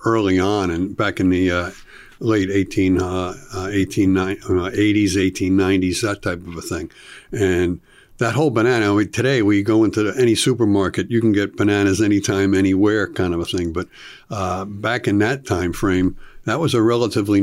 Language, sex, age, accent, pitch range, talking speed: English, male, 60-79, American, 90-105 Hz, 180 wpm